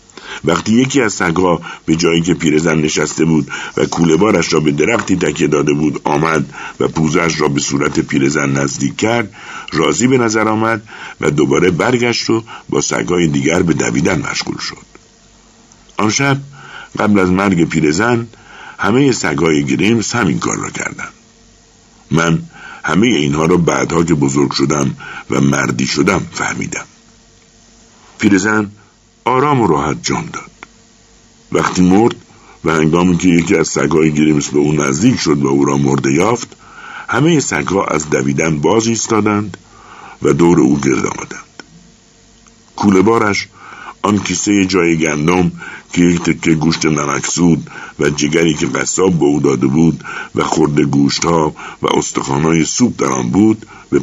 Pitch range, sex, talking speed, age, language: 75-105 Hz, male, 145 wpm, 60-79, Persian